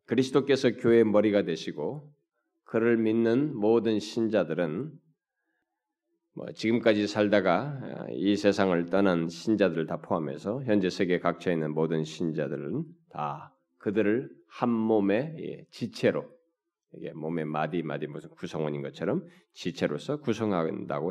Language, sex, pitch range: Korean, male, 90-120 Hz